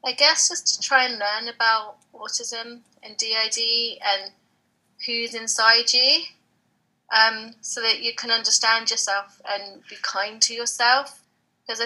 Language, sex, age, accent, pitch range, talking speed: English, female, 30-49, British, 195-235 Hz, 140 wpm